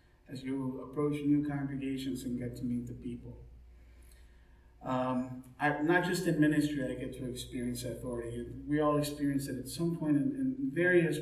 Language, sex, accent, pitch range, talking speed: English, male, American, 115-150 Hz, 170 wpm